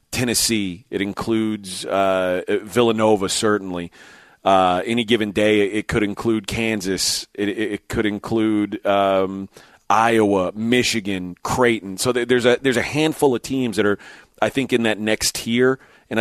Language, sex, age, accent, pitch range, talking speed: English, male, 30-49, American, 105-130 Hz, 145 wpm